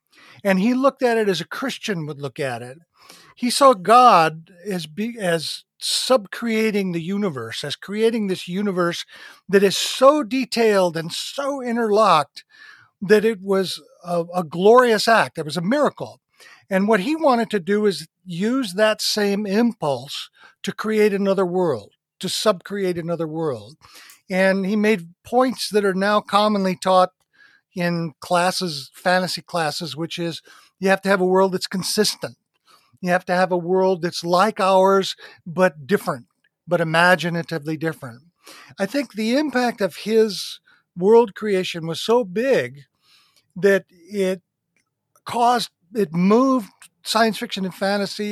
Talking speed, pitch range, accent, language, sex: 145 wpm, 170-215 Hz, American, English, male